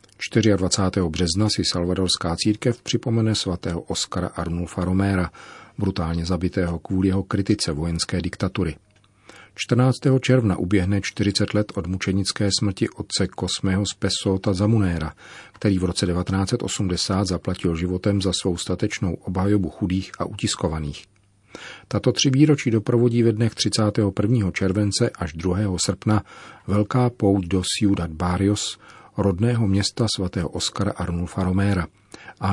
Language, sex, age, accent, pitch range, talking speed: Czech, male, 40-59, native, 90-110 Hz, 120 wpm